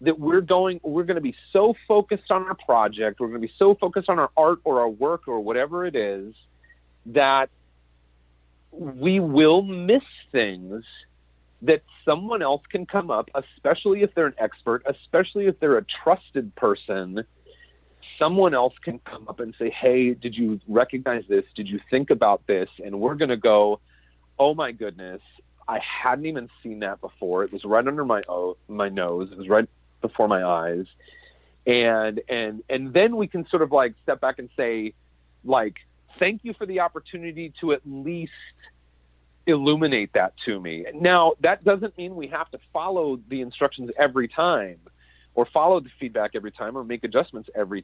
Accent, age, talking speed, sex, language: American, 40-59, 180 wpm, male, English